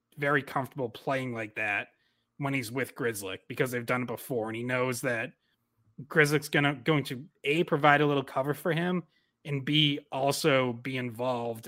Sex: male